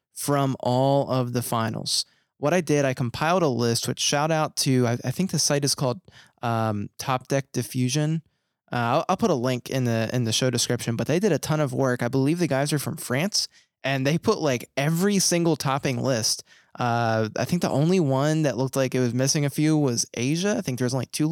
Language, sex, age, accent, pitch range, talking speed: English, male, 20-39, American, 125-155 Hz, 230 wpm